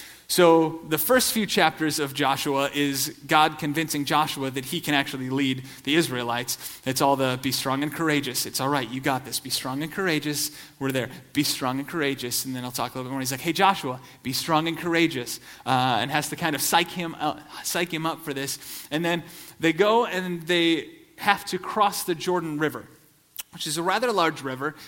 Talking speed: 210 wpm